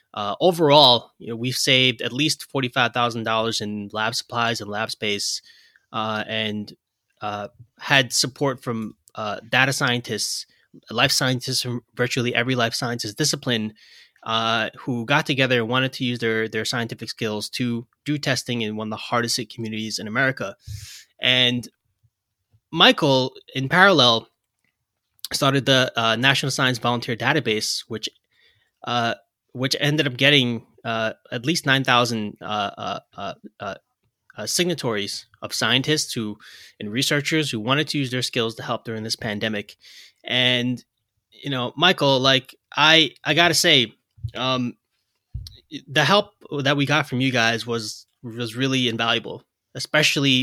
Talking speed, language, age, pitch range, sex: 145 wpm, English, 20-39, 115-135 Hz, male